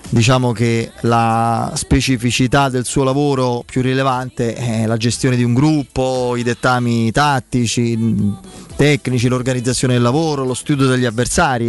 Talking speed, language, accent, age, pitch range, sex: 135 wpm, Italian, native, 30-49, 115-145 Hz, male